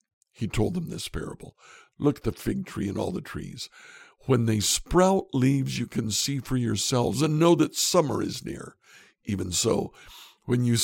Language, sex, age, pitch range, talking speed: English, male, 60-79, 105-135 Hz, 185 wpm